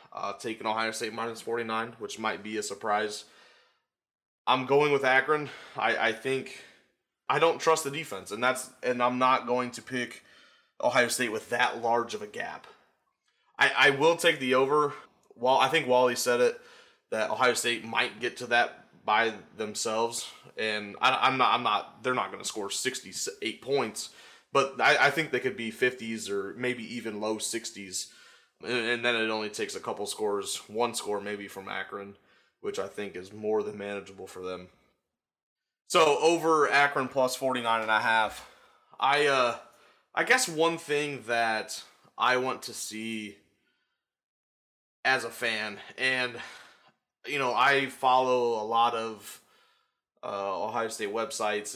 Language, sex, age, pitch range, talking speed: English, male, 20-39, 105-130 Hz, 170 wpm